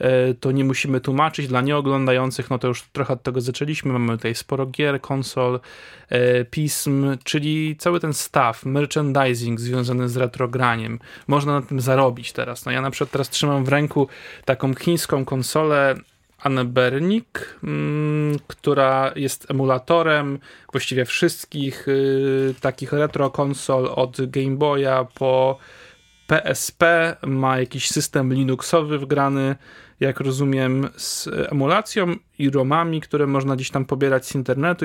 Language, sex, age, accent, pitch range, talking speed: Polish, male, 20-39, native, 130-145 Hz, 130 wpm